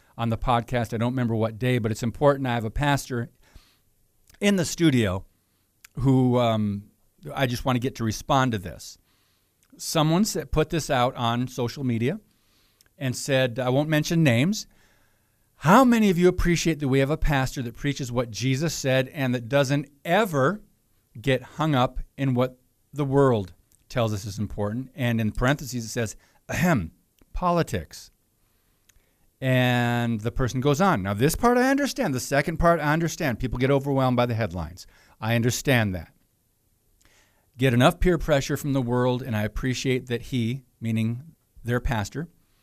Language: English